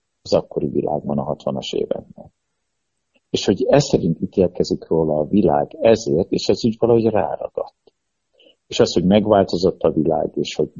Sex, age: male, 60-79